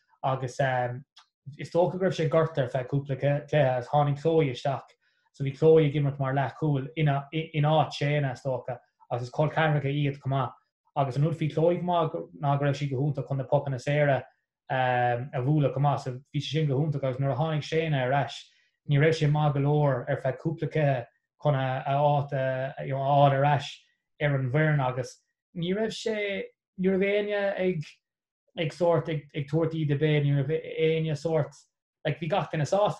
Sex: male